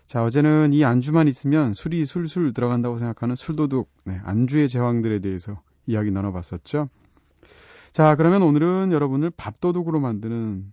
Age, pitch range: 30-49, 105-155 Hz